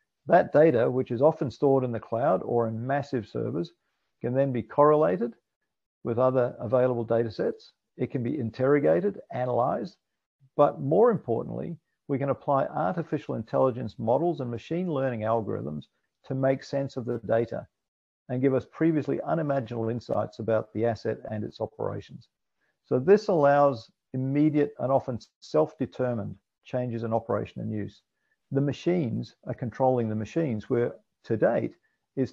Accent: Australian